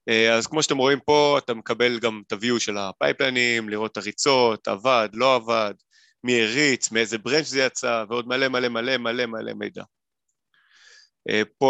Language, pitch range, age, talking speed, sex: Hebrew, 110-130 Hz, 30-49, 170 wpm, male